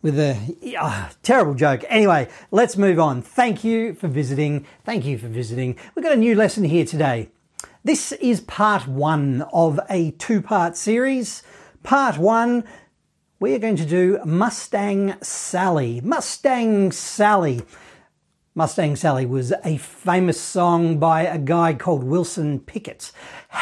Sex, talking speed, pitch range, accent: male, 135 wpm, 150-205 Hz, Australian